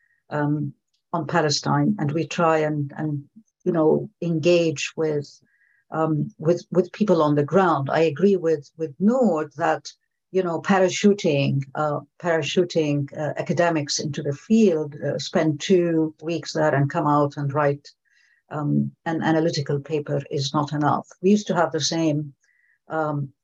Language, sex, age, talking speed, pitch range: English, female, 60-79, 150 wpm, 150-185 Hz